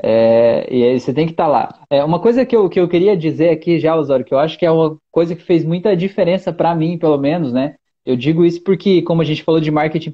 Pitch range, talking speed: 155-215 Hz, 280 wpm